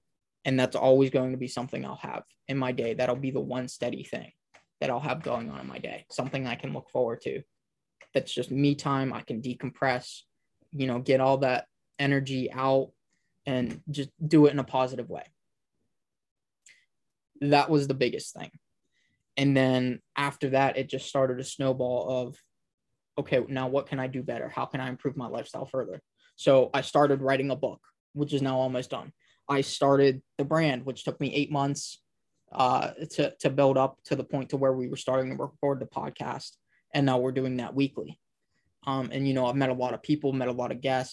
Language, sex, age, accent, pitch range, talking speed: English, male, 20-39, American, 130-140 Hz, 205 wpm